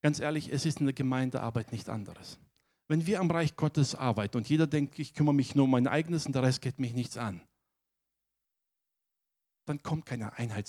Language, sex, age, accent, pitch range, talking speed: German, male, 60-79, German, 135-195 Hz, 200 wpm